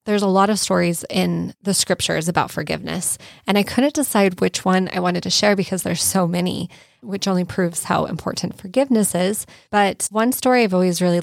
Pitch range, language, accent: 170-200 Hz, English, American